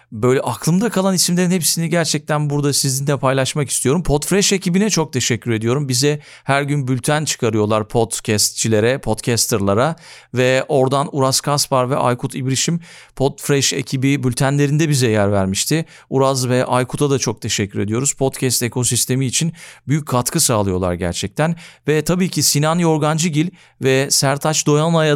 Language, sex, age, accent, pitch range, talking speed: Turkish, male, 40-59, native, 120-155 Hz, 135 wpm